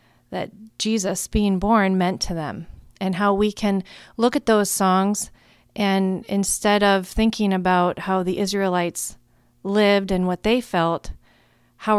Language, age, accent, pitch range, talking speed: English, 30-49, American, 180-210 Hz, 145 wpm